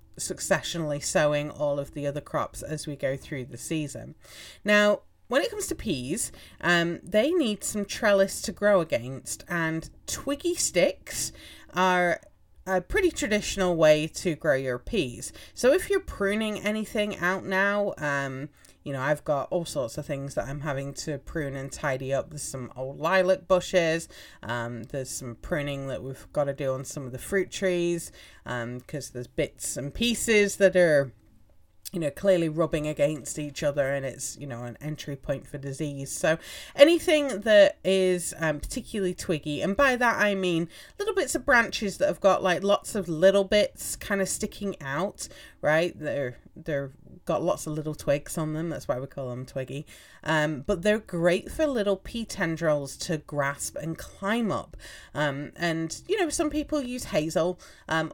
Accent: British